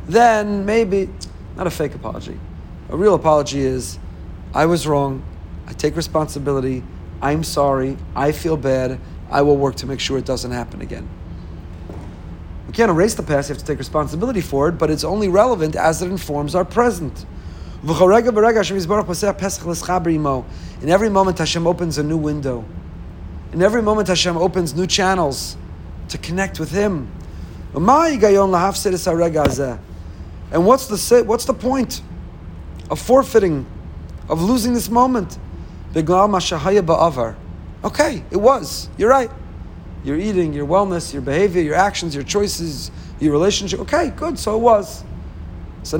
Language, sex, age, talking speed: English, male, 40-59, 140 wpm